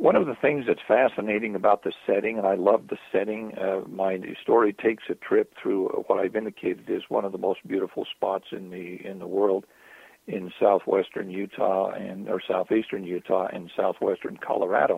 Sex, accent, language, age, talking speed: male, American, English, 60-79, 185 wpm